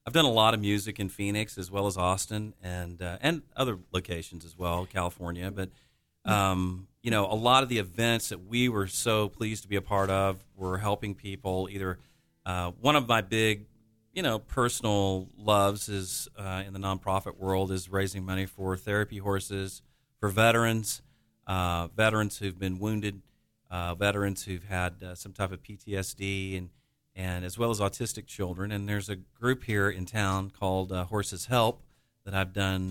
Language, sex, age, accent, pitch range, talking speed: English, male, 40-59, American, 95-110 Hz, 185 wpm